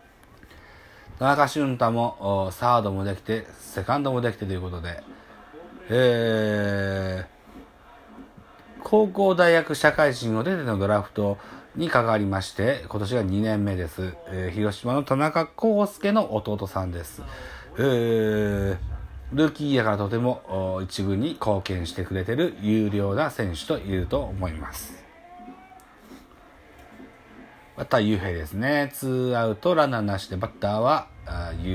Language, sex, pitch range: Japanese, male, 95-155 Hz